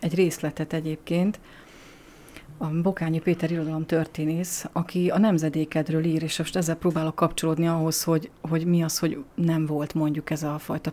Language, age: Hungarian, 30-49